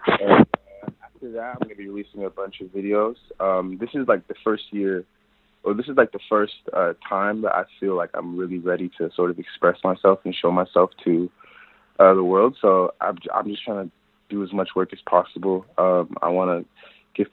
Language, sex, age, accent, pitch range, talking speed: English, male, 20-39, American, 85-100 Hz, 220 wpm